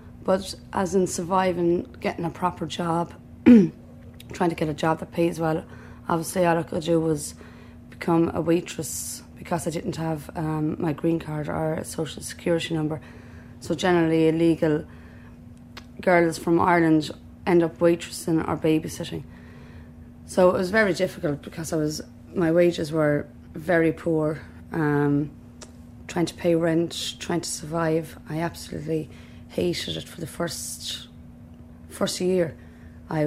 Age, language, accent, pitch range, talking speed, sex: 30-49, English, Irish, 145-170 Hz, 145 wpm, female